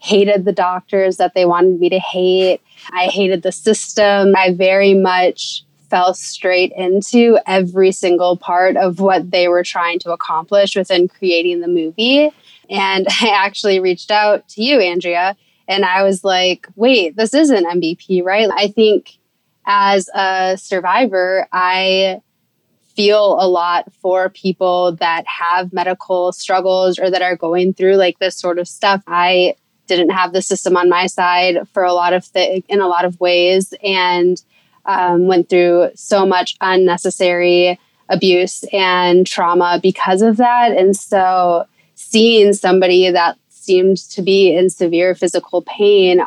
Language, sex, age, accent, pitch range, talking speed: English, female, 20-39, American, 180-195 Hz, 155 wpm